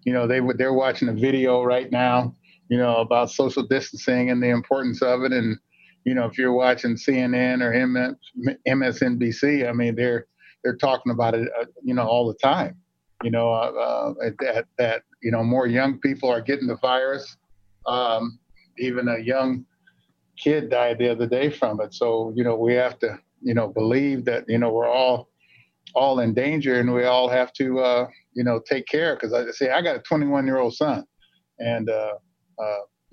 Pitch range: 115-130 Hz